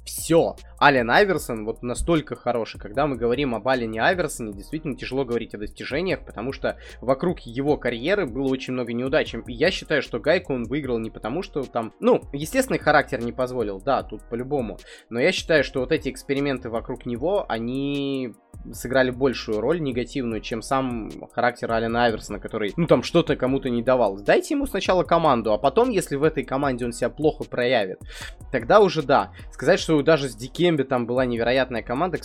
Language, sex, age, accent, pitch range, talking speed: Russian, male, 20-39, native, 115-145 Hz, 180 wpm